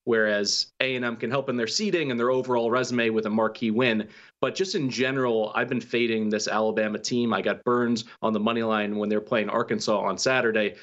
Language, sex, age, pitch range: English, male, 30-49, 110-125 Hz